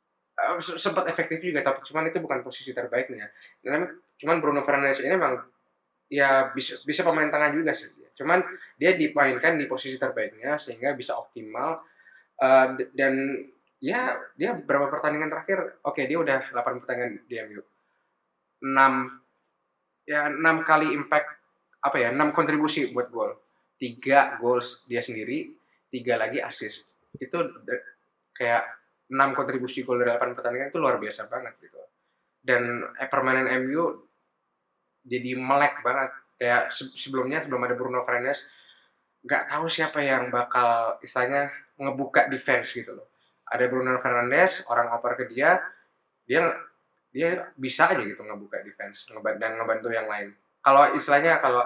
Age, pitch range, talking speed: 20-39, 125-150 Hz, 135 wpm